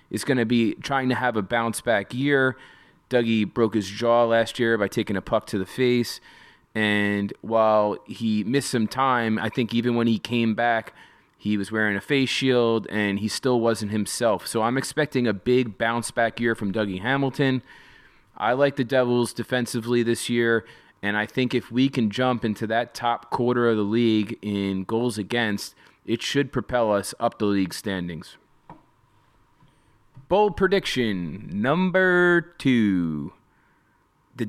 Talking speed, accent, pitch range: 165 wpm, American, 110-140 Hz